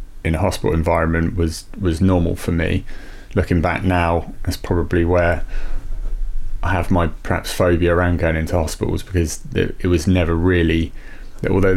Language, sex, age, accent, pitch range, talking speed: English, male, 30-49, British, 85-95 Hz, 155 wpm